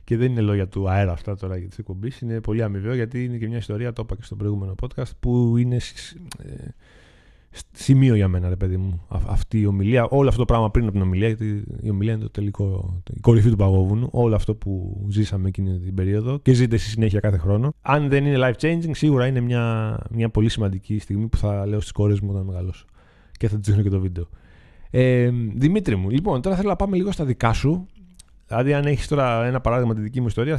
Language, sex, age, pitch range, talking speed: Greek, male, 20-39, 100-125 Hz, 225 wpm